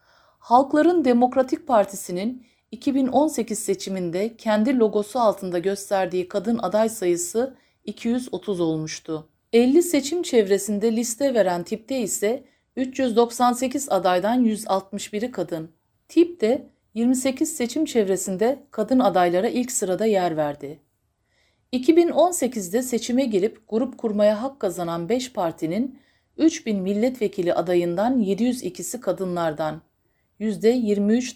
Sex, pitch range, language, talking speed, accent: female, 185-250 Hz, Turkish, 95 wpm, native